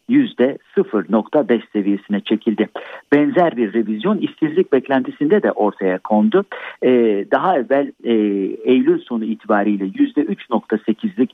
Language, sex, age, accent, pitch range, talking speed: Turkish, male, 60-79, native, 105-180 Hz, 100 wpm